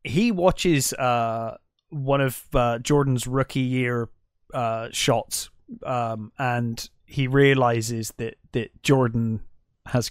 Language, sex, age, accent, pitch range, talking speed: English, male, 20-39, British, 120-155 Hz, 115 wpm